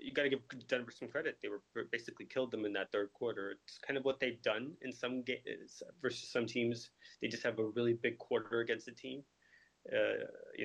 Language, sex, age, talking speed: English, male, 20-39, 225 wpm